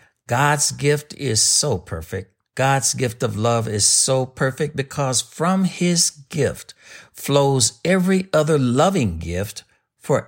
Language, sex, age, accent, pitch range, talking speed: English, male, 60-79, American, 110-140 Hz, 130 wpm